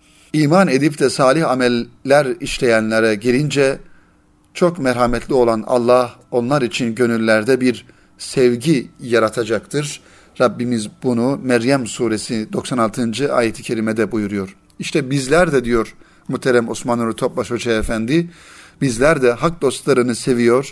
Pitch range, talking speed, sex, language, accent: 120-150 Hz, 115 wpm, male, Turkish, native